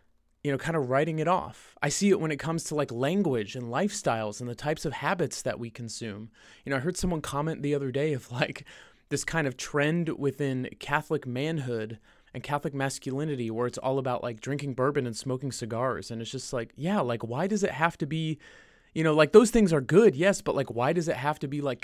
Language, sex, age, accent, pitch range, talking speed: English, male, 30-49, American, 130-175 Hz, 235 wpm